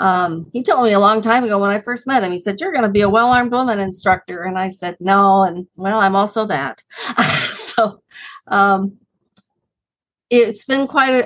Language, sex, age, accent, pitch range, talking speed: English, female, 50-69, American, 185-230 Hz, 195 wpm